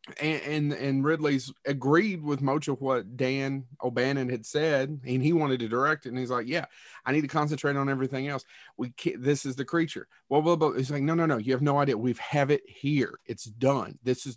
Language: English